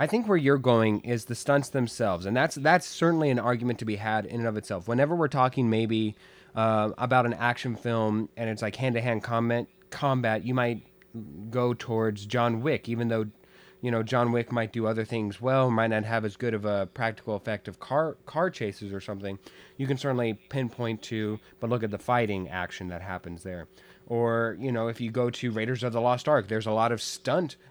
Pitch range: 110-130 Hz